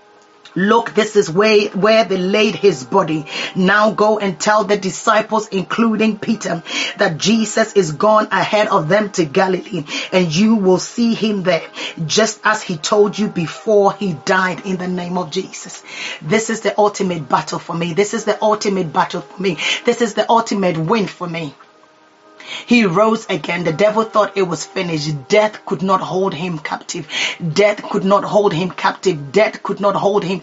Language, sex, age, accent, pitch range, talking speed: English, female, 30-49, Nigerian, 180-215 Hz, 180 wpm